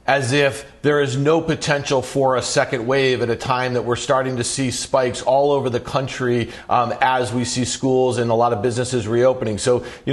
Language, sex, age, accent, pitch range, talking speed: English, male, 40-59, American, 130-180 Hz, 215 wpm